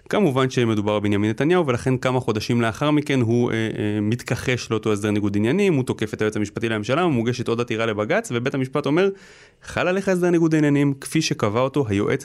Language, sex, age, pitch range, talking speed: Hebrew, male, 30-49, 110-145 Hz, 190 wpm